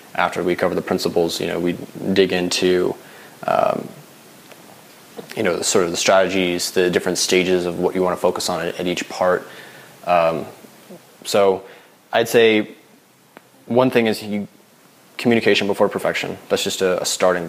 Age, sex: 20-39, male